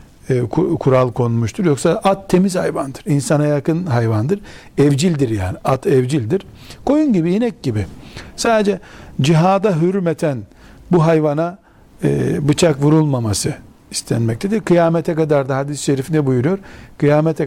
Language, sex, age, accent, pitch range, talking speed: Turkish, male, 60-79, native, 130-170 Hz, 120 wpm